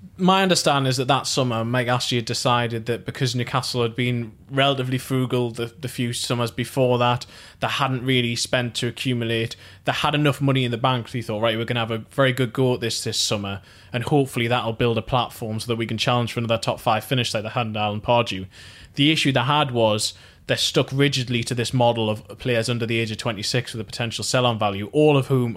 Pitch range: 115-130 Hz